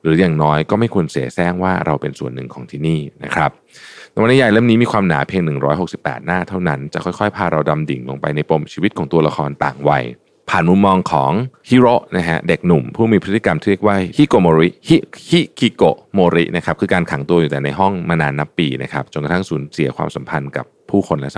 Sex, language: male, Thai